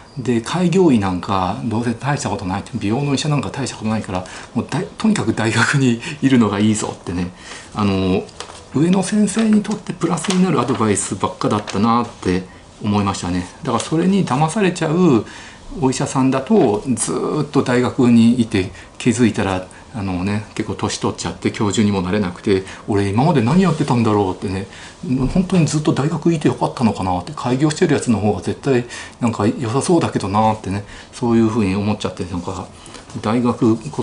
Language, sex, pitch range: Japanese, male, 100-140 Hz